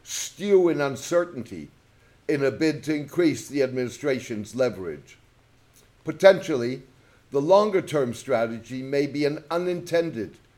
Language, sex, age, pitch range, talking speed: English, male, 60-79, 125-165 Hz, 110 wpm